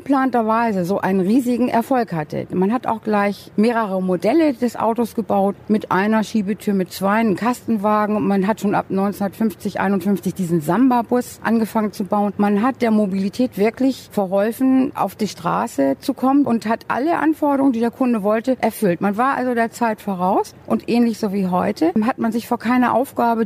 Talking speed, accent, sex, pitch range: 180 wpm, German, female, 185-240 Hz